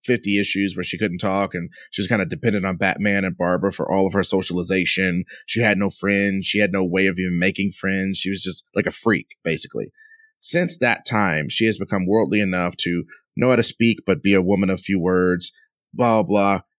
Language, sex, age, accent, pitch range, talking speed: English, male, 30-49, American, 95-120 Hz, 220 wpm